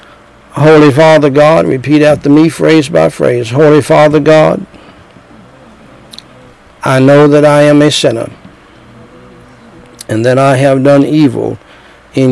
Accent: American